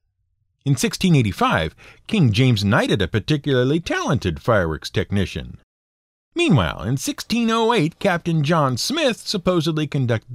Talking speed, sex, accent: 105 wpm, male, American